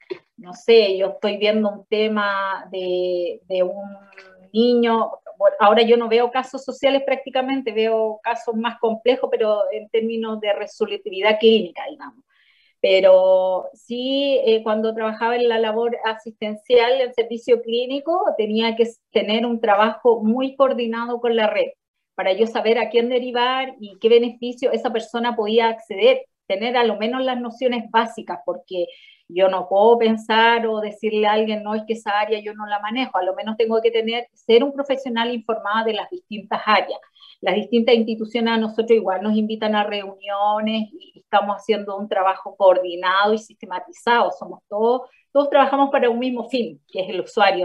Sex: female